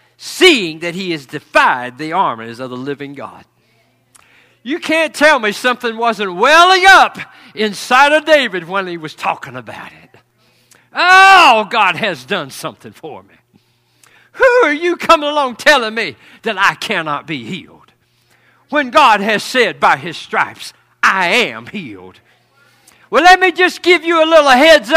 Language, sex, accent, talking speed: English, male, American, 160 wpm